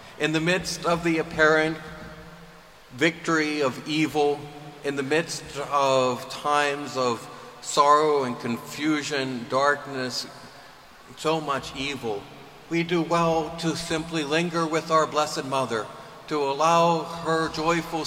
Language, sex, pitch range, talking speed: English, male, 125-155 Hz, 120 wpm